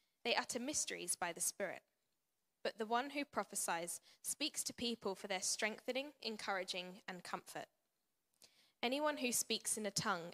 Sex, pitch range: female, 195-245 Hz